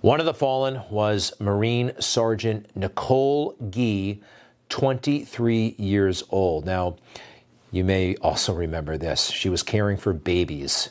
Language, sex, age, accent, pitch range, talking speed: English, male, 40-59, American, 95-120 Hz, 125 wpm